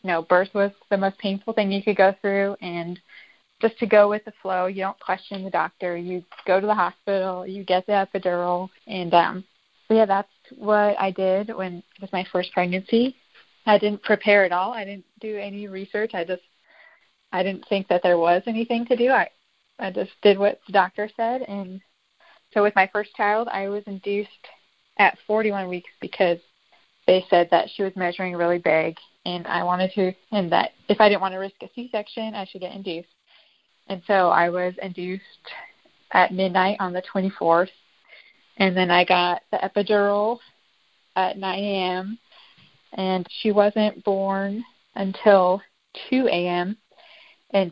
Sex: female